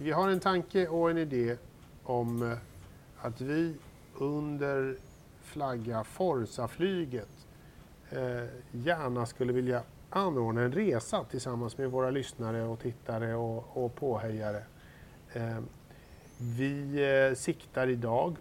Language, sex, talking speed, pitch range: Swedish, male, 100 wpm, 125-145 Hz